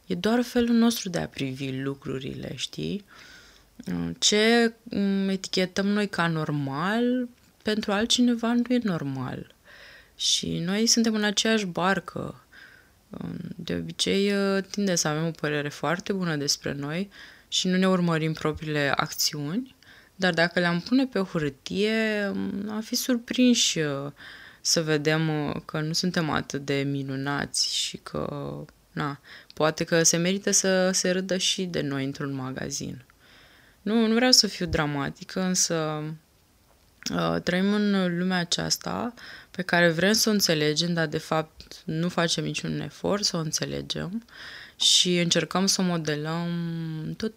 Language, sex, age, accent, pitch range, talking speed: Romanian, female, 20-39, native, 155-205 Hz, 140 wpm